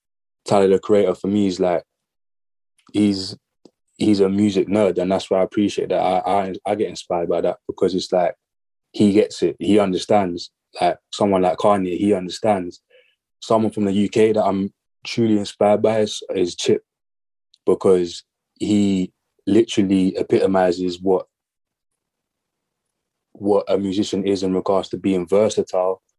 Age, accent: 20-39, British